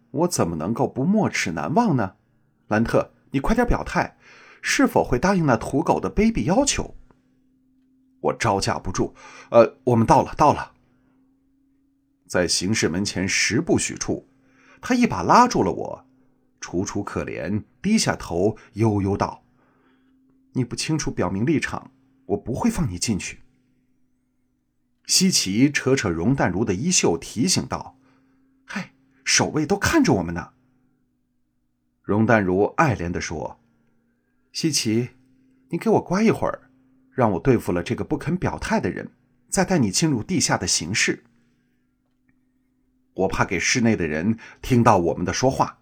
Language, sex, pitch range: Chinese, male, 100-135 Hz